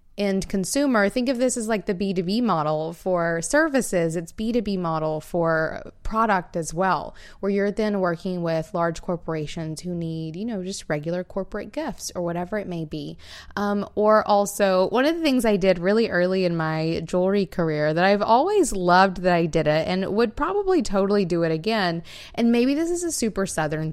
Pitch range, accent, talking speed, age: 170-210 Hz, American, 190 wpm, 20-39